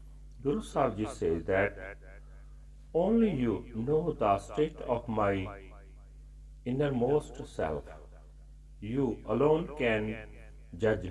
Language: Punjabi